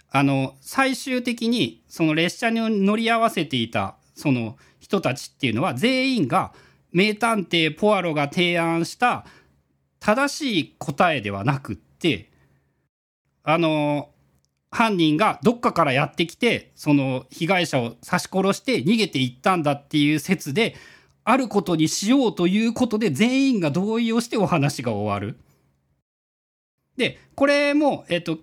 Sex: male